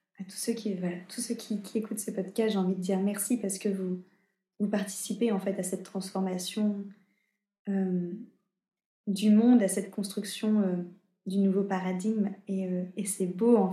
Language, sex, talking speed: French, female, 185 wpm